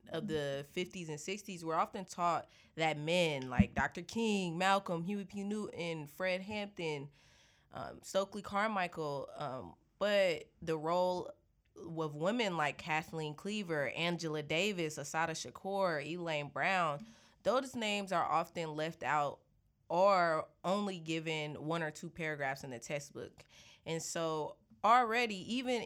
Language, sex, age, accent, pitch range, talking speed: English, female, 20-39, American, 150-195 Hz, 130 wpm